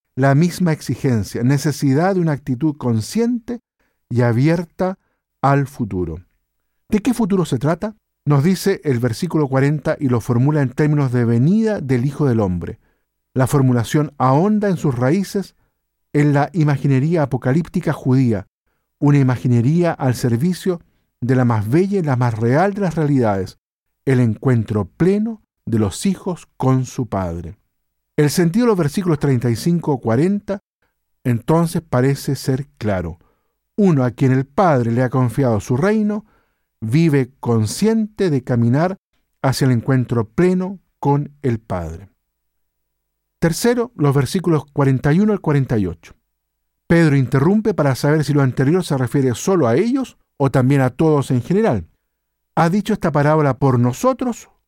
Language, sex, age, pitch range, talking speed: Spanish, male, 50-69, 125-175 Hz, 140 wpm